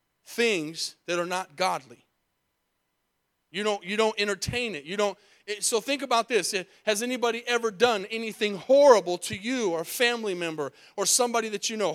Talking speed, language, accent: 180 wpm, English, American